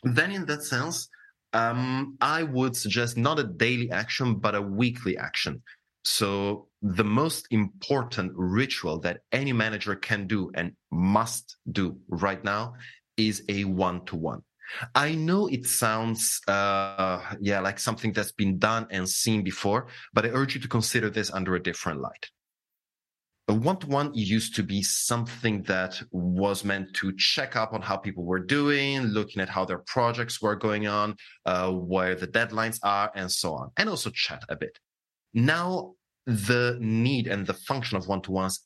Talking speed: 165 wpm